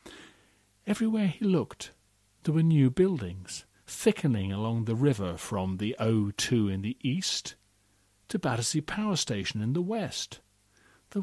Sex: male